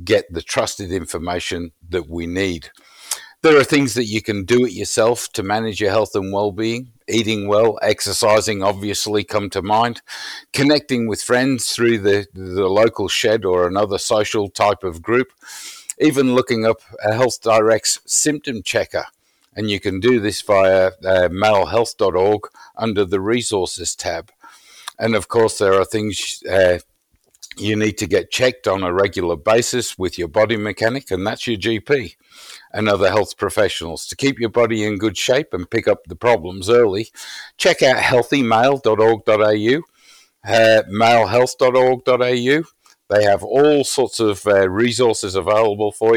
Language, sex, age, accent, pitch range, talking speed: English, male, 50-69, Australian, 100-125 Hz, 155 wpm